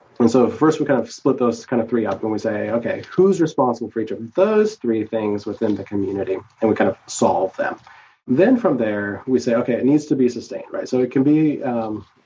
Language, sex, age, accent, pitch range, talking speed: English, male, 30-49, American, 105-130 Hz, 245 wpm